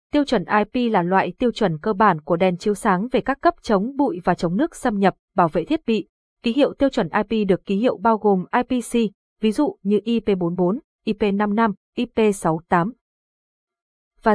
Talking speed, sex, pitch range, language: 190 wpm, female, 180-235 Hz, Vietnamese